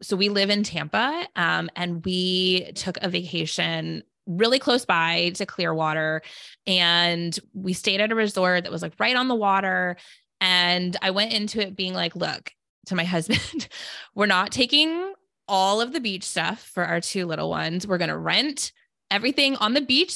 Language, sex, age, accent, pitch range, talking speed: English, female, 20-39, American, 175-210 Hz, 180 wpm